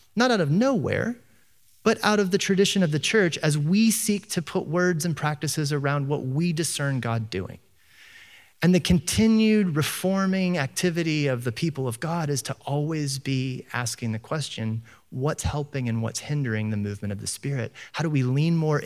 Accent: American